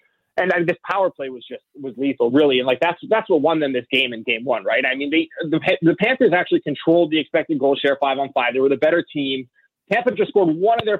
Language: English